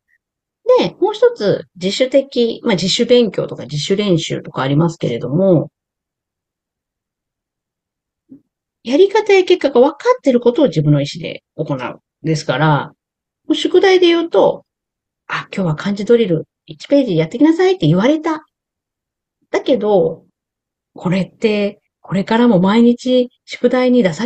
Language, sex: Japanese, female